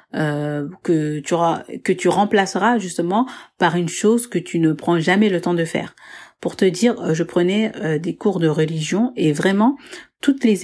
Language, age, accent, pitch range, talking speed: French, 40-59, French, 165-220 Hz, 180 wpm